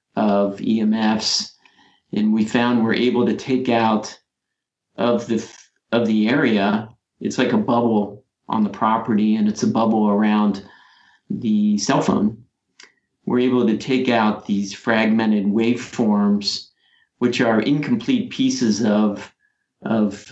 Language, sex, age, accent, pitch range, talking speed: English, male, 50-69, American, 105-125 Hz, 130 wpm